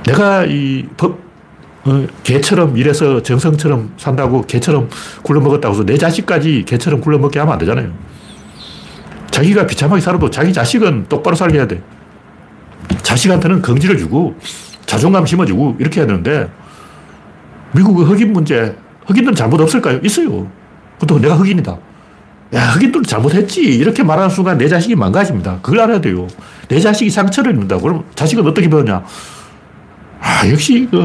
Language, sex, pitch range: Korean, male, 145-195 Hz